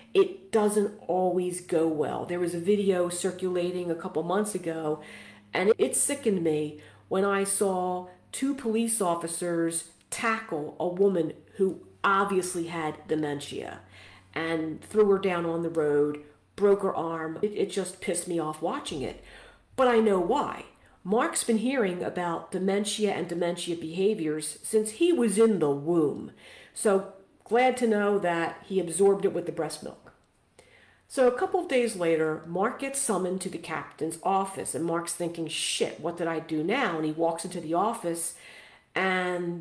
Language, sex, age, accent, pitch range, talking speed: English, female, 50-69, American, 165-215 Hz, 165 wpm